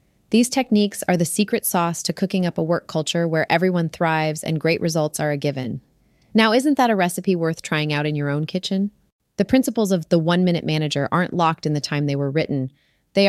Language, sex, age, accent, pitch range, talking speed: English, female, 30-49, American, 155-190 Hz, 215 wpm